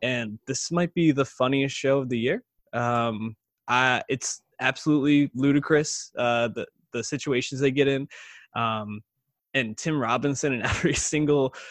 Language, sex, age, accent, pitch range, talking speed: English, male, 20-39, American, 115-145 Hz, 150 wpm